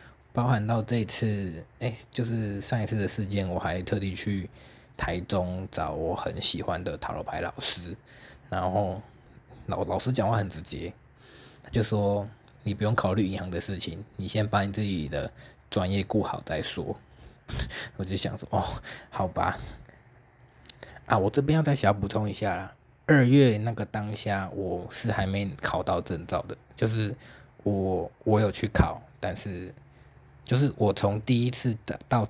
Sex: male